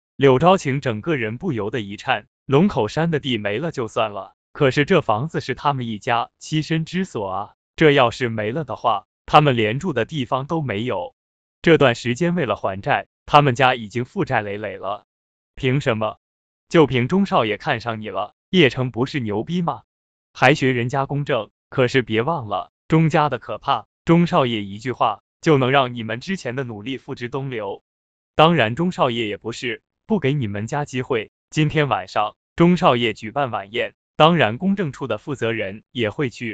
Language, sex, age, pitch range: Chinese, male, 20-39, 110-150 Hz